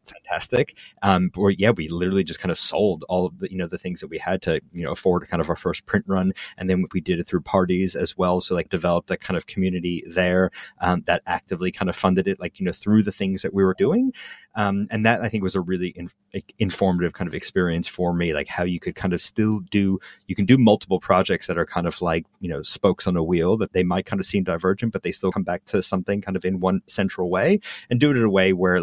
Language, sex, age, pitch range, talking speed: English, male, 30-49, 90-100 Hz, 270 wpm